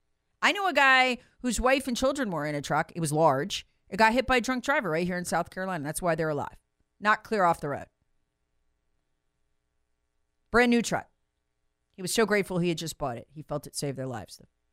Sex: female